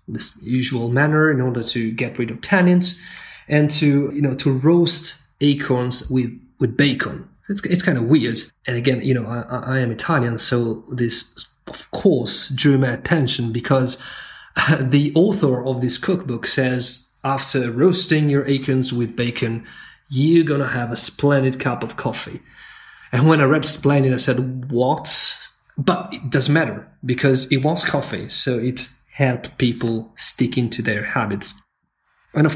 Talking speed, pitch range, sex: 160 wpm, 120-145 Hz, male